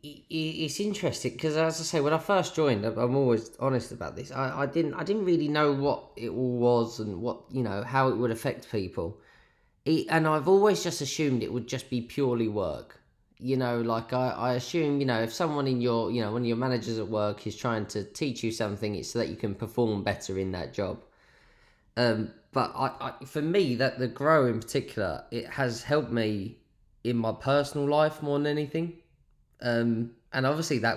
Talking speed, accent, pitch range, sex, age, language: 210 wpm, British, 110-140 Hz, male, 20-39, English